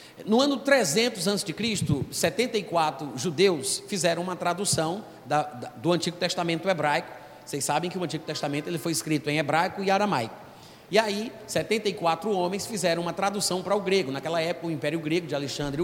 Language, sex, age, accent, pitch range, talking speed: Portuguese, male, 30-49, Brazilian, 155-195 Hz, 170 wpm